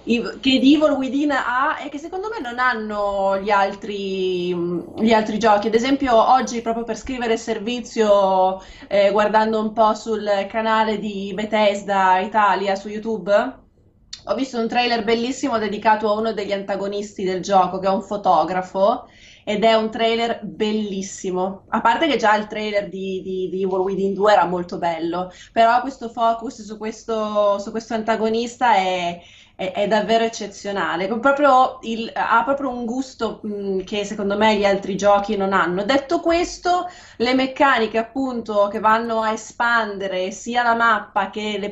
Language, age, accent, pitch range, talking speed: Italian, 20-39, native, 195-230 Hz, 150 wpm